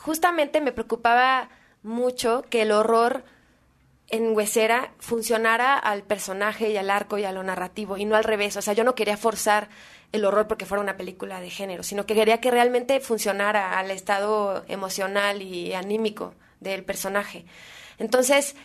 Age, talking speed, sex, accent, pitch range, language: 20-39, 165 wpm, female, Mexican, 205-245 Hz, Spanish